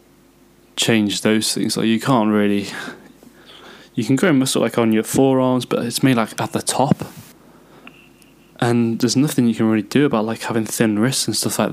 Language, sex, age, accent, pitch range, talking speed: English, male, 10-29, British, 105-125 Hz, 190 wpm